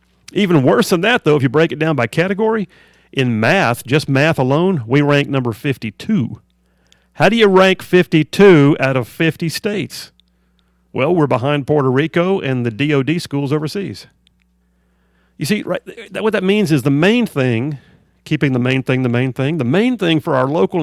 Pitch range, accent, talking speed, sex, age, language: 125-170 Hz, American, 185 wpm, male, 50-69, English